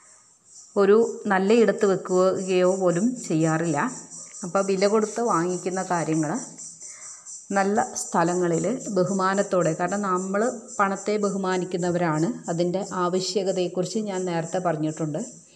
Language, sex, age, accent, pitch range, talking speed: Malayalam, female, 30-49, native, 170-205 Hz, 85 wpm